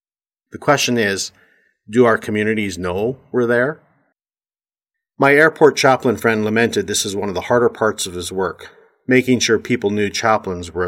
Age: 40-59